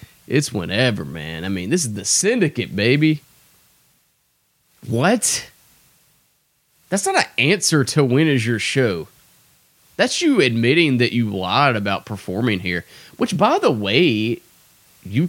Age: 20-39